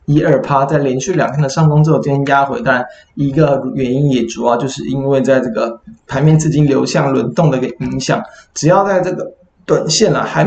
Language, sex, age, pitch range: Chinese, male, 20-39, 135-165 Hz